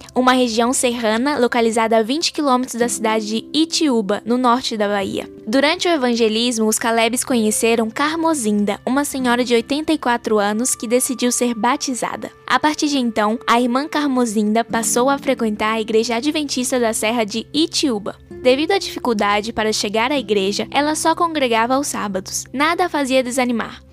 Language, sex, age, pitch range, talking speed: Portuguese, female, 10-29, 225-270 Hz, 160 wpm